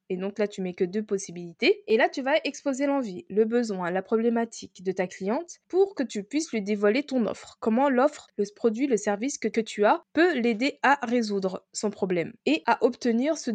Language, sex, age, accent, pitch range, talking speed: French, female, 20-39, French, 200-275 Hz, 215 wpm